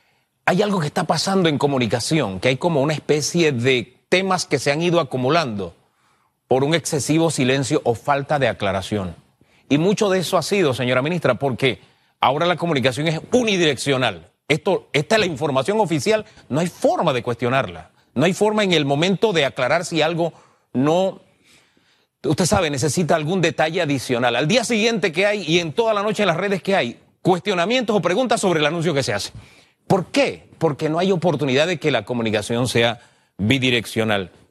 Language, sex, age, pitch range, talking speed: Spanish, male, 30-49, 130-185 Hz, 180 wpm